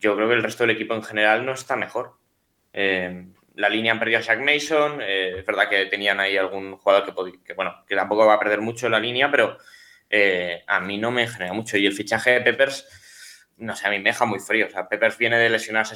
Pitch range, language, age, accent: 100-125 Hz, Spanish, 20-39, Spanish